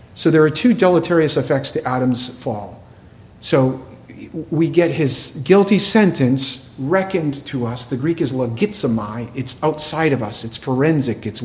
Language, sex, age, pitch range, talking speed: English, male, 40-59, 125-160 Hz, 150 wpm